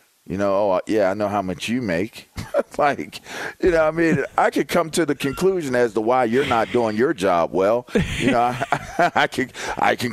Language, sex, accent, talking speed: English, male, American, 225 wpm